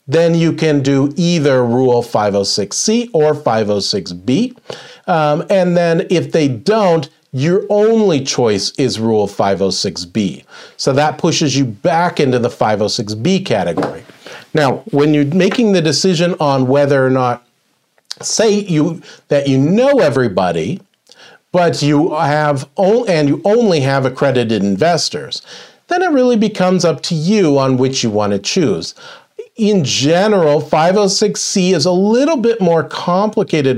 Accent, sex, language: American, male, English